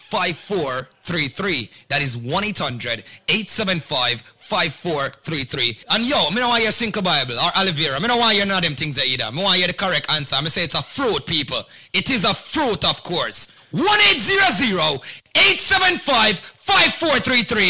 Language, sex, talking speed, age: English, male, 175 wpm, 30-49